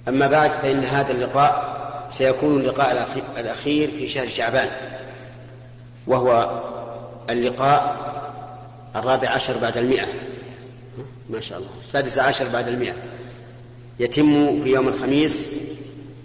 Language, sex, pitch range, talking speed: Arabic, male, 120-140 Hz, 105 wpm